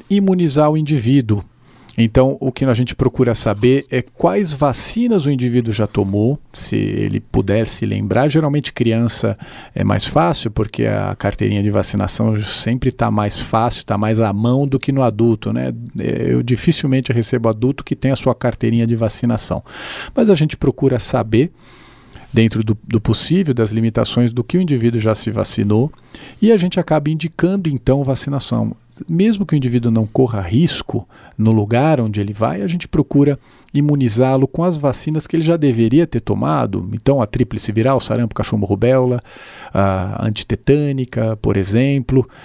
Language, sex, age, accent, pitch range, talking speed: Portuguese, male, 40-59, Brazilian, 110-140 Hz, 165 wpm